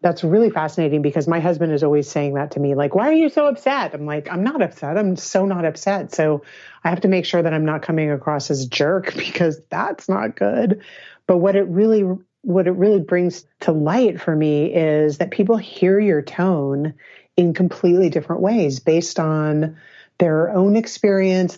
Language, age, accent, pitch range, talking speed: English, 30-49, American, 150-185 Hz, 195 wpm